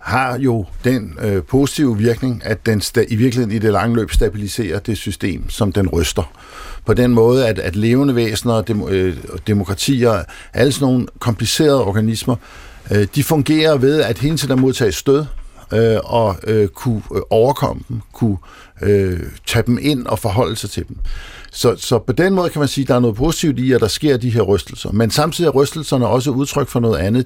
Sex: male